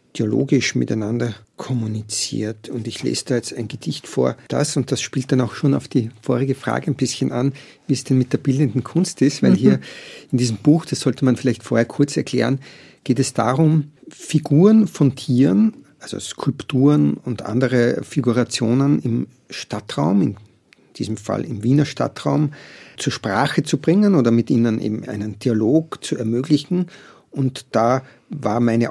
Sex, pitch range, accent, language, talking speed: male, 115-145 Hz, Austrian, German, 165 wpm